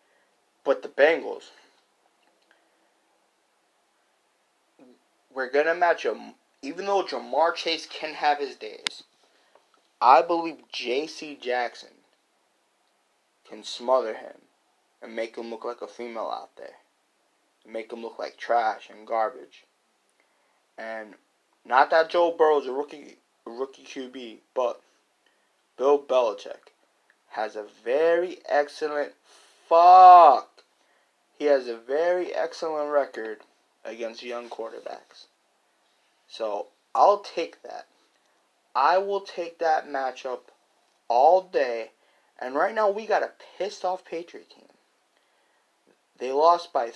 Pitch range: 130-200 Hz